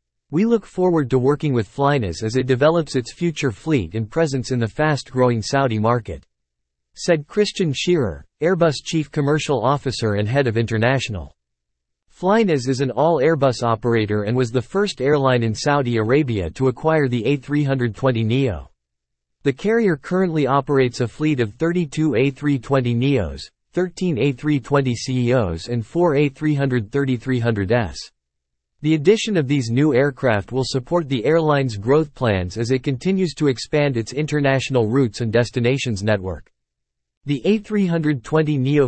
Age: 50-69